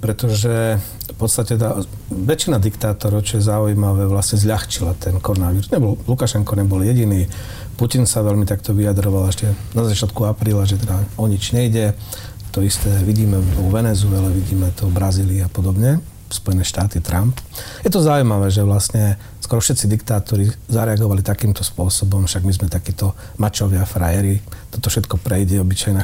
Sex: male